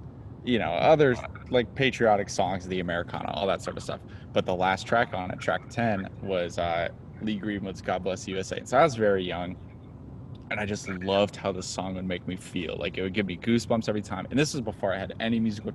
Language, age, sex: English, 20-39, male